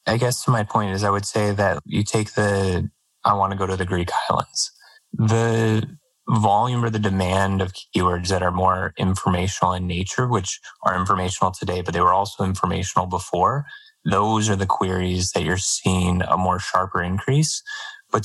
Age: 20-39